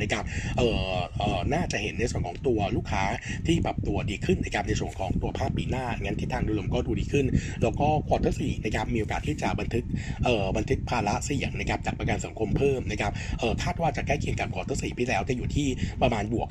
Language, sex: Thai, male